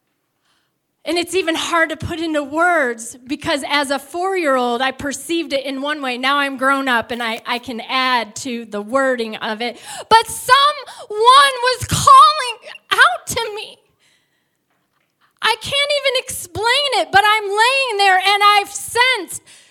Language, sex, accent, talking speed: English, female, American, 155 wpm